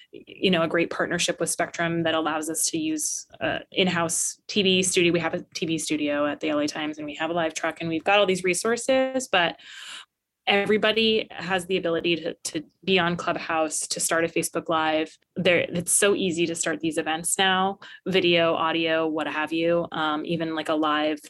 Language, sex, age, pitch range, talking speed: English, female, 20-39, 160-190 Hz, 200 wpm